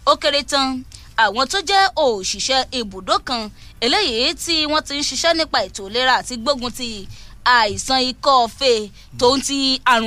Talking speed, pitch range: 145 wpm, 245-335 Hz